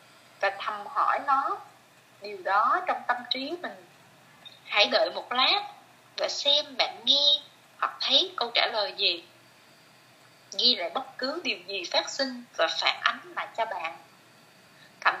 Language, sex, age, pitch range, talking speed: Vietnamese, female, 20-39, 210-320 Hz, 155 wpm